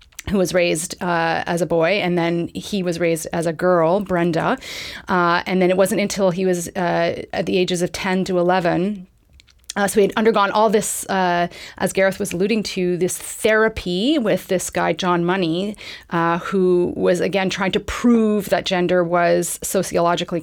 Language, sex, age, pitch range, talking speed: English, female, 30-49, 170-190 Hz, 185 wpm